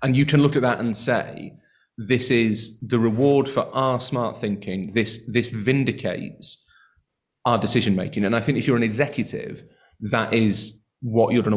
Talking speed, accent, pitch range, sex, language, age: 170 wpm, British, 105-125 Hz, male, English, 30-49